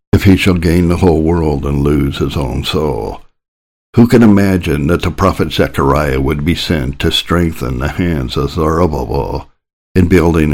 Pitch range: 70-85 Hz